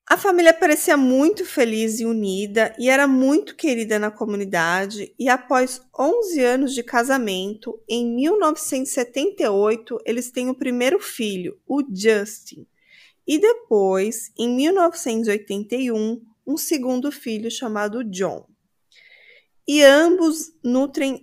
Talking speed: 115 wpm